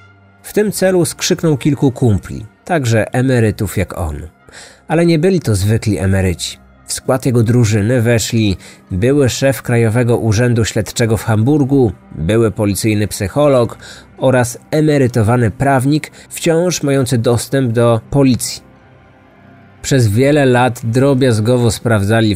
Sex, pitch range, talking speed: male, 105-135 Hz, 120 wpm